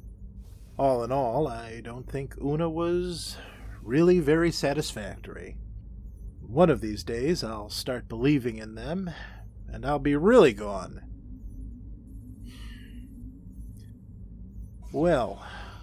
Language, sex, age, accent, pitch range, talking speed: English, male, 40-59, American, 100-150 Hz, 100 wpm